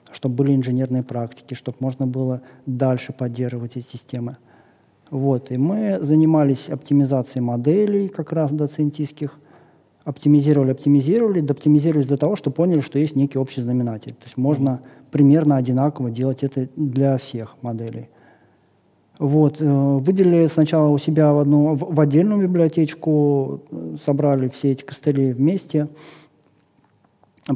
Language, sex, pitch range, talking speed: Russian, male, 130-150 Hz, 130 wpm